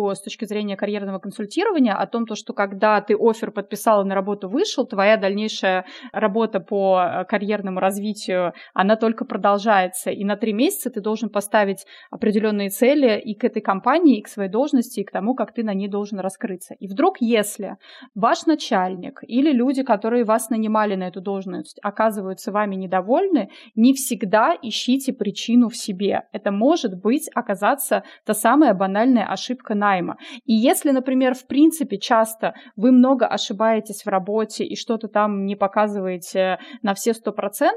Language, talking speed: Russian, 160 wpm